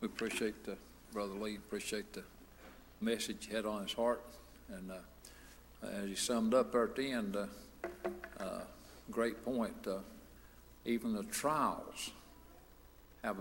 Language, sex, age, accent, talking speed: English, male, 60-79, American, 145 wpm